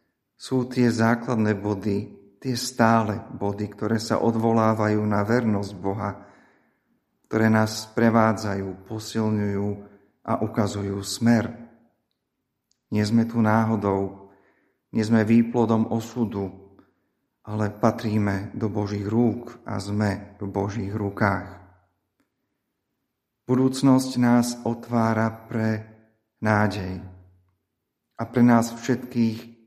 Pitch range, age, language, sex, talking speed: 100-115 Hz, 40-59, Slovak, male, 95 wpm